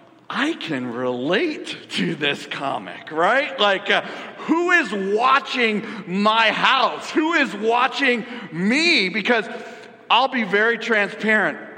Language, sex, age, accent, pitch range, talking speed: English, male, 50-69, American, 170-230 Hz, 115 wpm